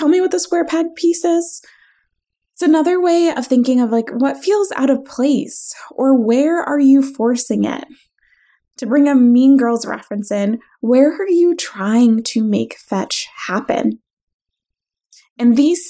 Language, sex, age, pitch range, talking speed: English, female, 20-39, 200-260 Hz, 160 wpm